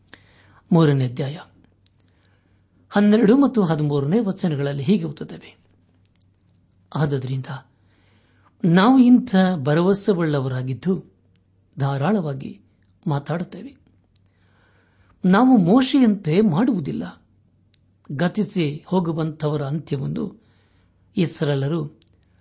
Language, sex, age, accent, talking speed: Kannada, male, 60-79, native, 55 wpm